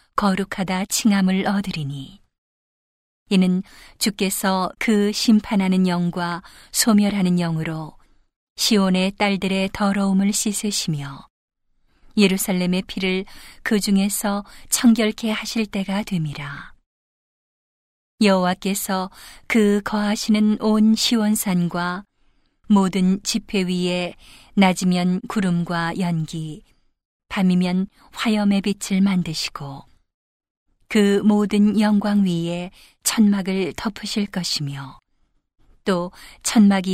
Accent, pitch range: native, 180-210 Hz